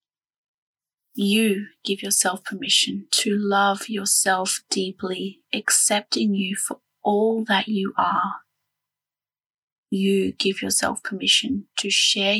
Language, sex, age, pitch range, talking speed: English, female, 20-39, 195-220 Hz, 100 wpm